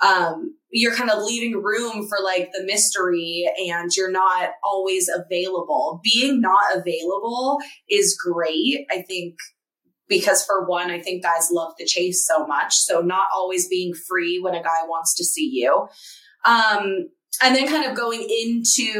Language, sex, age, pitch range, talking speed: English, female, 20-39, 185-260 Hz, 165 wpm